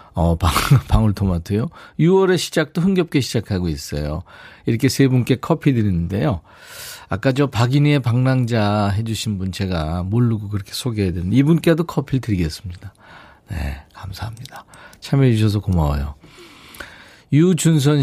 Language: Korean